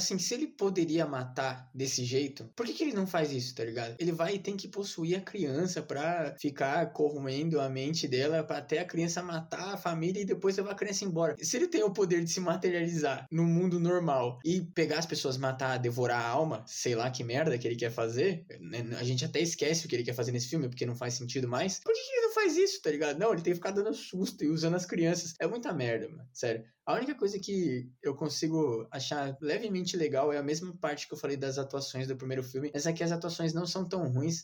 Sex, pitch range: male, 135-175 Hz